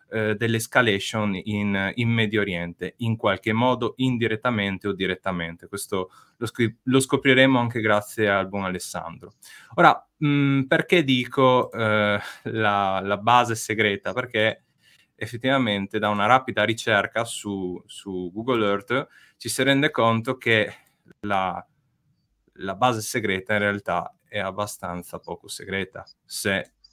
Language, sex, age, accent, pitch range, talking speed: Italian, male, 20-39, native, 100-130 Hz, 120 wpm